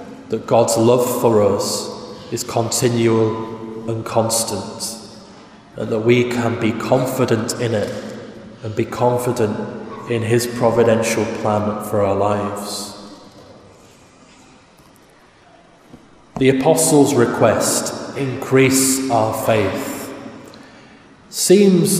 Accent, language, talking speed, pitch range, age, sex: British, English, 95 wpm, 110-125 Hz, 20-39, male